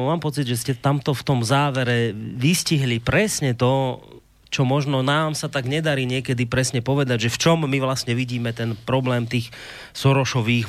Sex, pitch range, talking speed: male, 115-140 Hz, 170 wpm